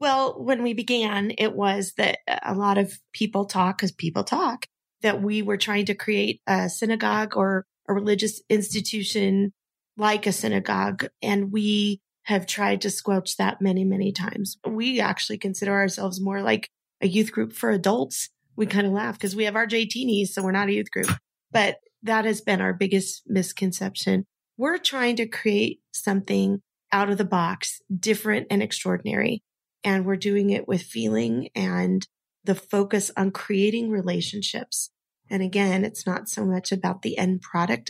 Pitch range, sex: 190-210 Hz, female